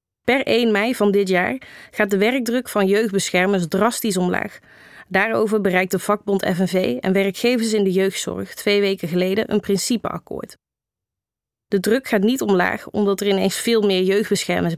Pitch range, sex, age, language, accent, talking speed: 185-225 Hz, female, 20-39, Dutch, Dutch, 155 wpm